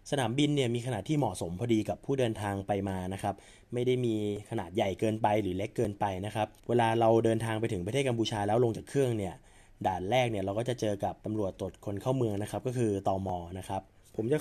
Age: 20-39